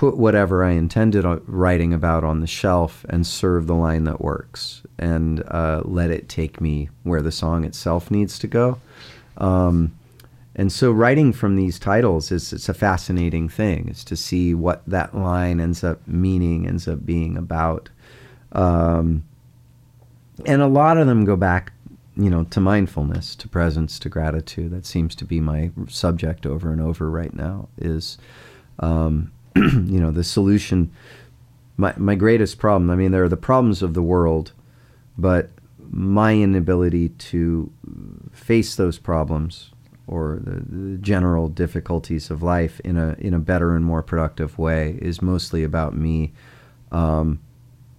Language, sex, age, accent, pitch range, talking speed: English, male, 40-59, American, 80-110 Hz, 160 wpm